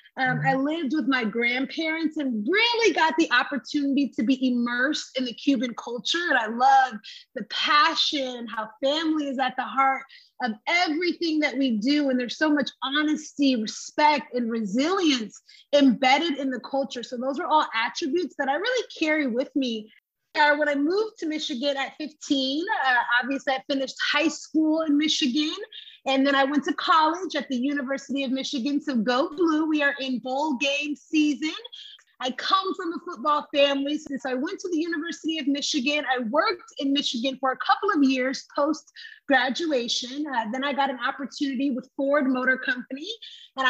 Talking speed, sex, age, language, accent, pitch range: 175 wpm, female, 30-49, English, American, 255-320 Hz